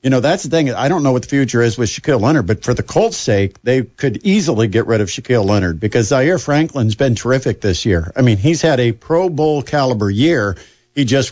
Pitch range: 120-155 Hz